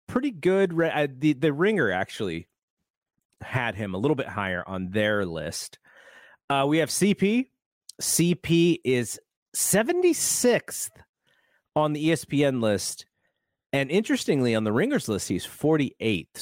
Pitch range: 95-160 Hz